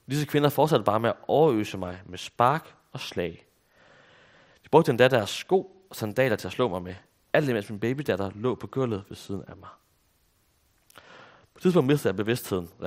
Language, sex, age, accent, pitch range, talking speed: Danish, male, 30-49, native, 95-125 Hz, 195 wpm